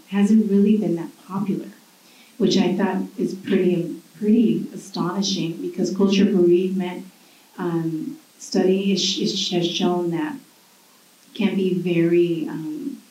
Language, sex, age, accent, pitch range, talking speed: English, female, 30-49, American, 170-205 Hz, 115 wpm